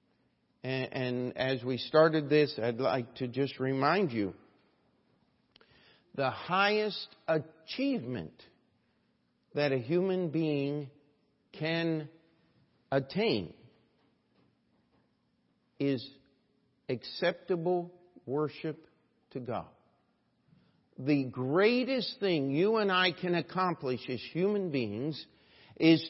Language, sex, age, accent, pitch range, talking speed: English, male, 50-69, American, 135-180 Hz, 85 wpm